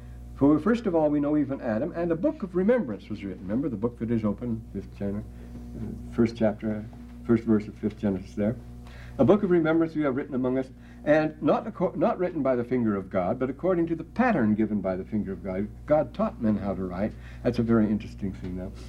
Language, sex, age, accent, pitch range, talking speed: English, male, 60-79, American, 95-120 Hz, 235 wpm